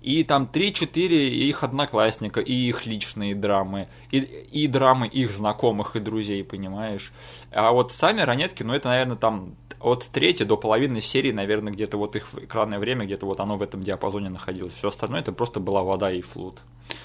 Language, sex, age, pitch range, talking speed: Russian, male, 20-39, 105-135 Hz, 180 wpm